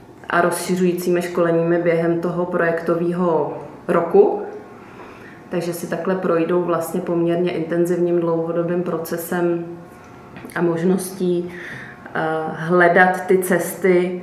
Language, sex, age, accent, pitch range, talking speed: Czech, female, 20-39, native, 170-180 Hz, 90 wpm